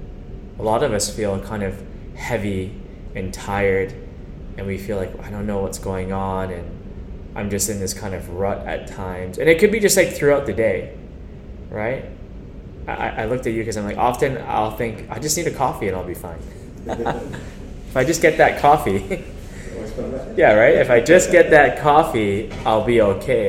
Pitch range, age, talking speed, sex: 95-120 Hz, 10-29, 195 wpm, male